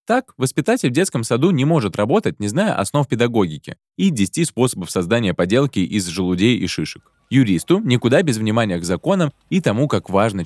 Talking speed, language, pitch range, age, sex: 180 wpm, Russian, 100-160 Hz, 20-39, male